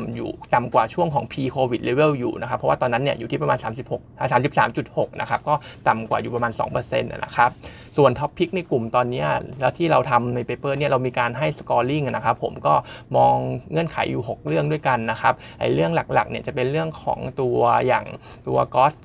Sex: male